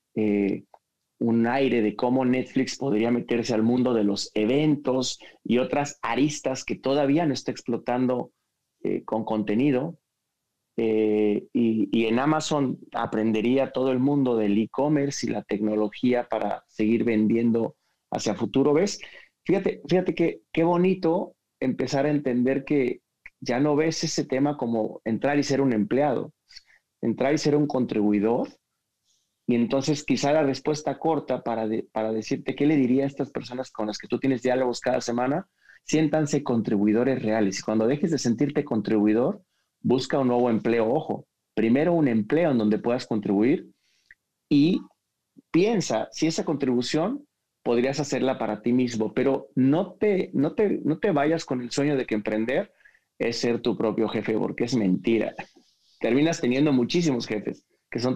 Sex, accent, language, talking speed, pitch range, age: male, Mexican, Spanish, 155 wpm, 115-145 Hz, 40-59